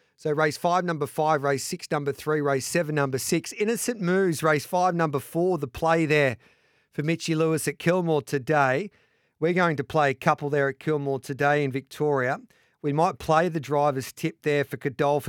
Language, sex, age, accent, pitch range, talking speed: English, male, 40-59, Australian, 140-165 Hz, 190 wpm